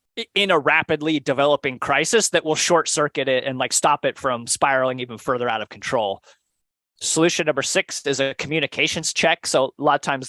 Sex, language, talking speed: male, English, 190 wpm